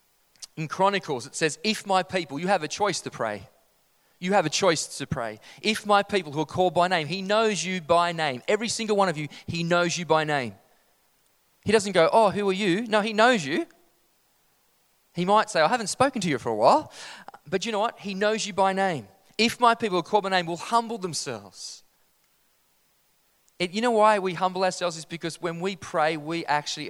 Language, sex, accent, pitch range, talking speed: English, male, Australian, 155-205 Hz, 215 wpm